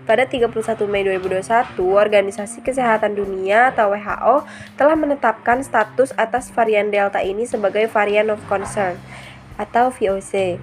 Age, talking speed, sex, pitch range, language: 20-39, 125 wpm, female, 200-245 Hz, Indonesian